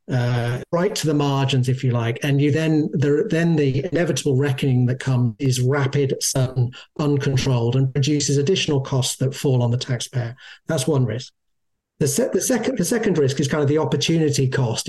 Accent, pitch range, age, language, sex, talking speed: British, 130-155 Hz, 40-59, English, male, 190 wpm